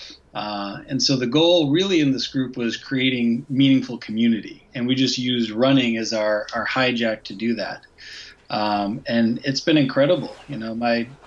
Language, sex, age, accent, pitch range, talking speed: English, male, 20-39, American, 115-130 Hz, 175 wpm